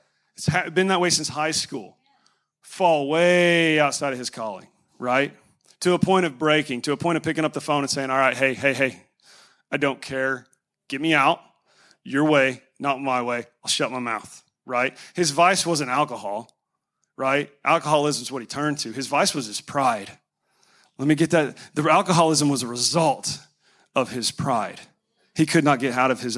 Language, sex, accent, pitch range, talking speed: English, male, American, 130-165 Hz, 195 wpm